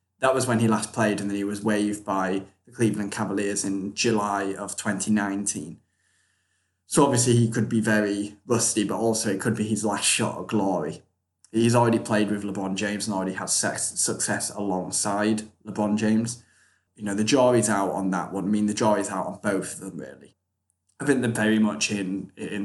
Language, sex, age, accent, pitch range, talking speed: English, male, 20-39, British, 95-110 Hz, 200 wpm